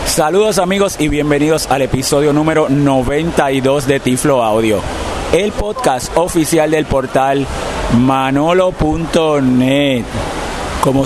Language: Spanish